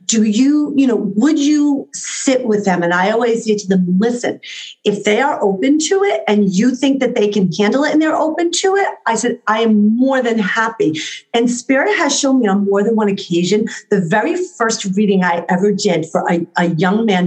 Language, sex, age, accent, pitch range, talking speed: English, female, 40-59, American, 200-280 Hz, 220 wpm